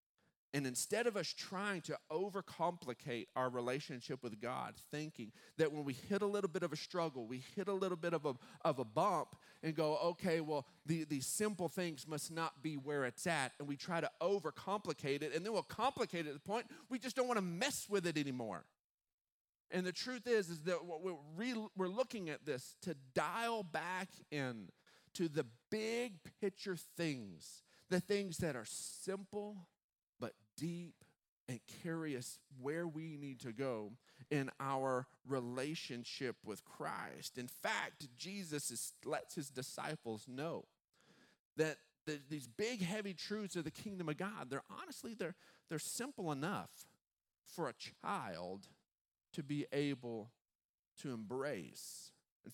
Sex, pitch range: male, 140-190 Hz